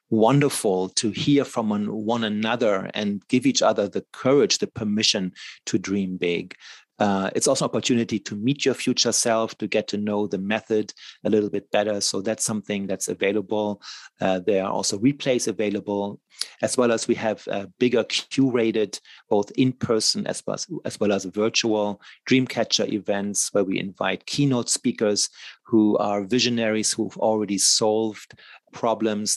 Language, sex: English, male